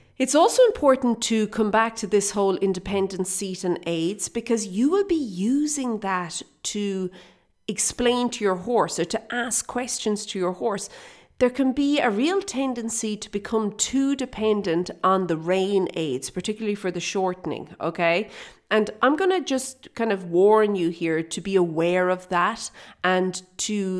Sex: female